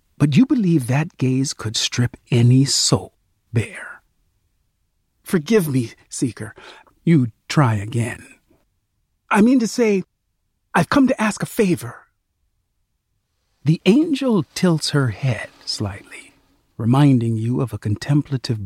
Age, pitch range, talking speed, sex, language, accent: 50-69, 110-155 Hz, 120 wpm, male, English, American